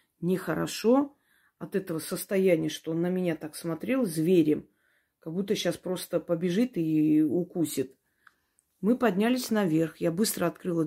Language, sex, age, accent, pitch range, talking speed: Russian, female, 30-49, native, 155-195 Hz, 135 wpm